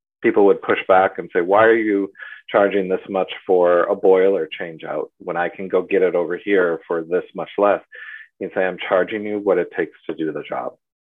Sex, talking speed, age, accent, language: male, 225 wpm, 40-59, American, English